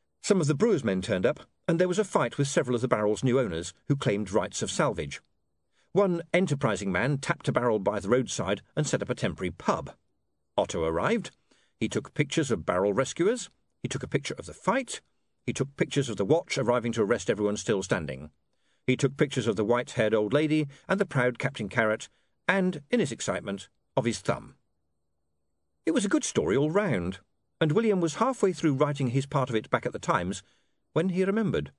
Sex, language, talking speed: male, English, 210 wpm